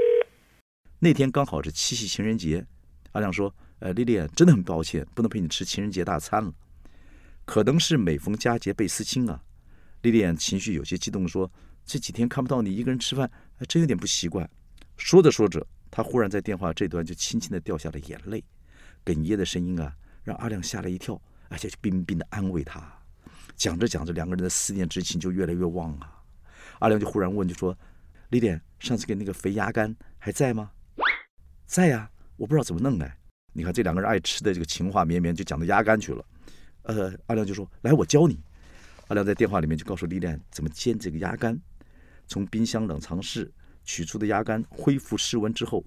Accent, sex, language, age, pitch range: native, male, Chinese, 50-69, 80-115 Hz